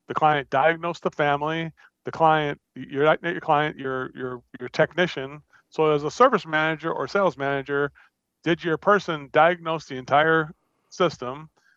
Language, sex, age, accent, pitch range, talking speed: English, male, 40-59, American, 140-165 Hz, 150 wpm